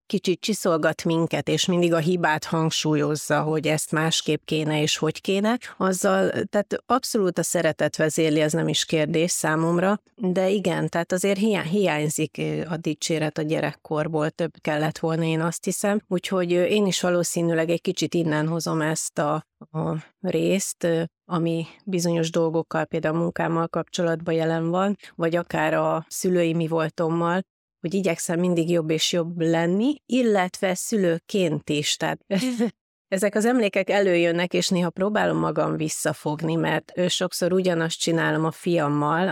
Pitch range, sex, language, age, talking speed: 155-185 Hz, female, Hungarian, 30-49, 140 wpm